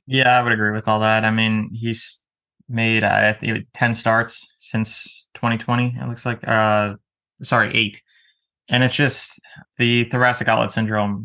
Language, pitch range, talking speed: English, 105-120 Hz, 155 wpm